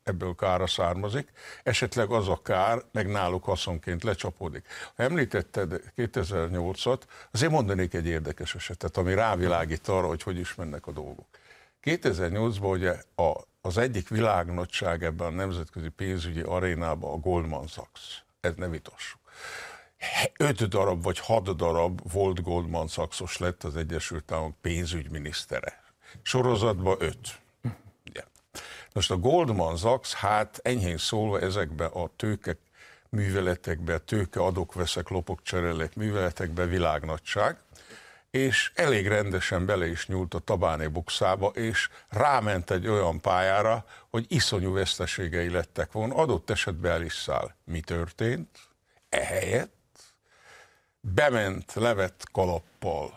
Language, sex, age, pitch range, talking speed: Hungarian, male, 60-79, 85-105 Hz, 120 wpm